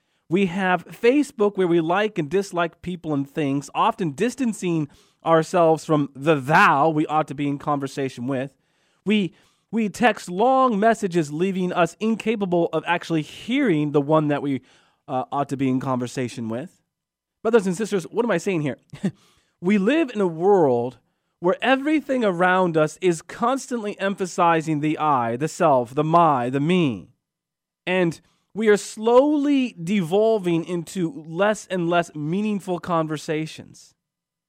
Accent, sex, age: American, male, 30-49